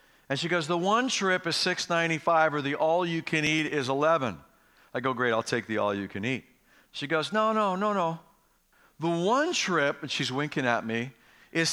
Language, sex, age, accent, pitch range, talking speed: English, male, 50-69, American, 140-190 Hz, 210 wpm